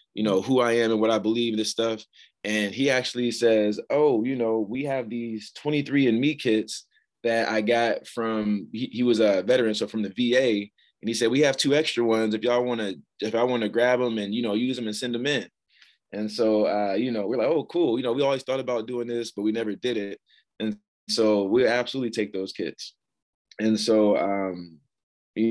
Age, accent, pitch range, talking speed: 20-39, American, 105-120 Hz, 225 wpm